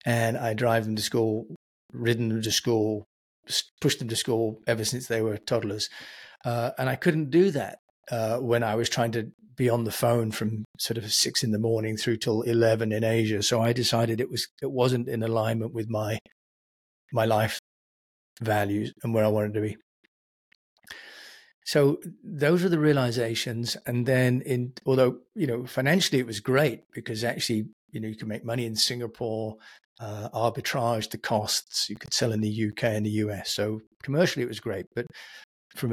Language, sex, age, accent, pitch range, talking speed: English, male, 40-59, British, 110-130 Hz, 185 wpm